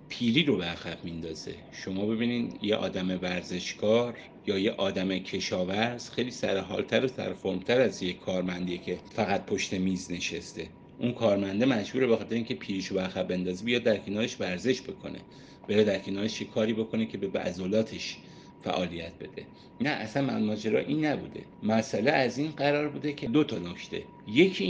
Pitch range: 95-120 Hz